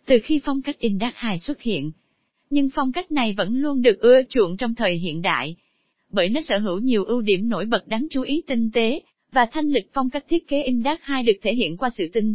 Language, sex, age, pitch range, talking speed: Vietnamese, female, 20-39, 215-285 Hz, 245 wpm